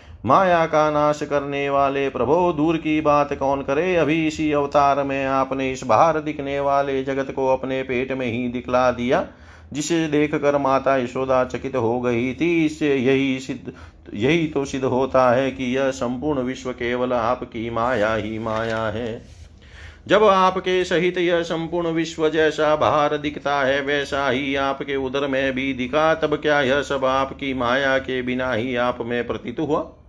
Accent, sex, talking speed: native, male, 165 wpm